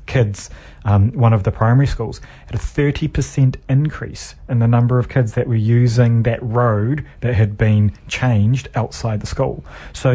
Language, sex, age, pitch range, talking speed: English, male, 30-49, 105-125 Hz, 175 wpm